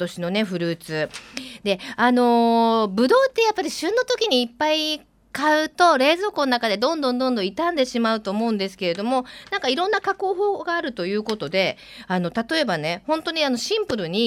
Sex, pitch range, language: female, 180-275 Hz, Japanese